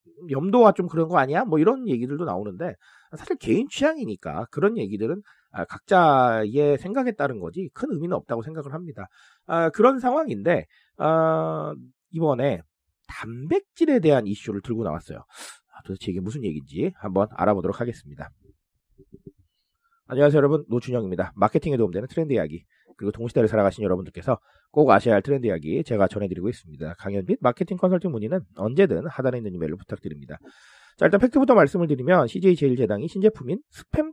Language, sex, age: Korean, male, 40-59